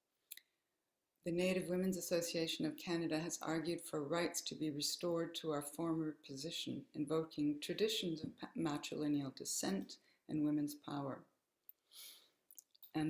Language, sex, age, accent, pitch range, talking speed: English, female, 60-79, American, 150-180 Hz, 120 wpm